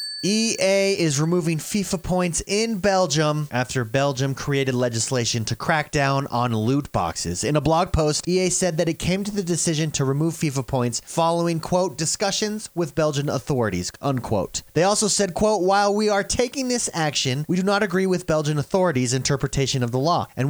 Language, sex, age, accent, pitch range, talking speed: English, male, 30-49, American, 135-185 Hz, 180 wpm